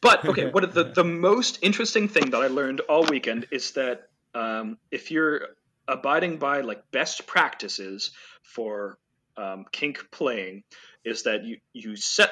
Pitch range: 120-190 Hz